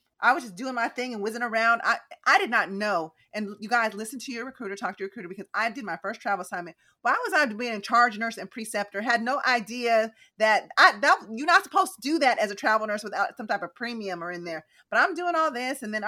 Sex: female